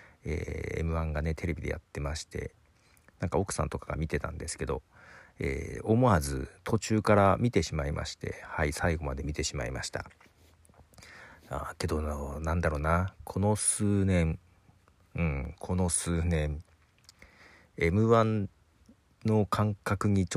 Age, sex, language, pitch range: 50-69, male, Japanese, 75-100 Hz